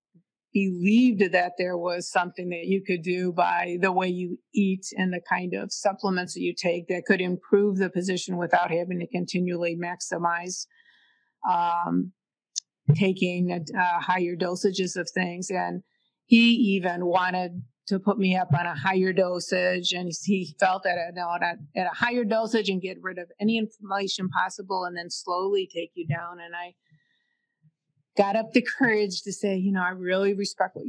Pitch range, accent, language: 180-205 Hz, American, English